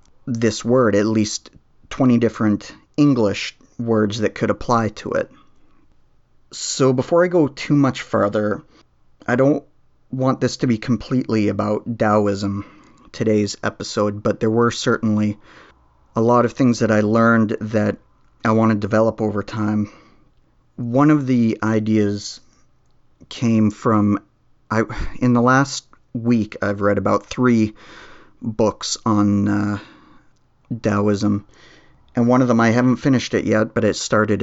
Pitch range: 105-125 Hz